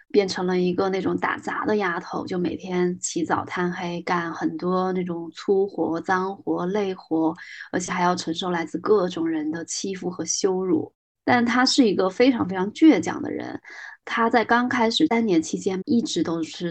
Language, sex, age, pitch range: Chinese, female, 20-39, 175-240 Hz